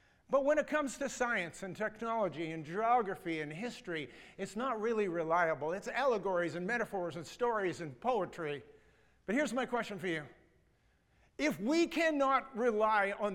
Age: 50-69